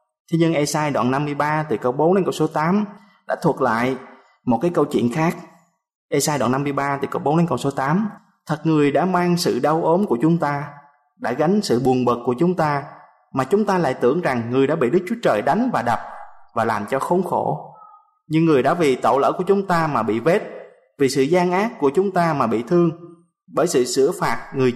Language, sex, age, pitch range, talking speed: Vietnamese, male, 20-39, 140-185 Hz, 230 wpm